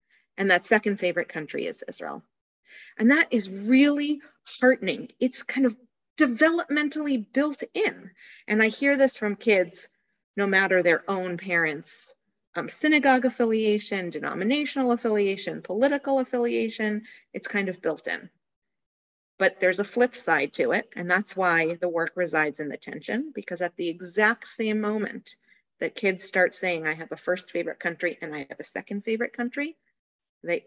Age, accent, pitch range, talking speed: 40-59, American, 175-245 Hz, 160 wpm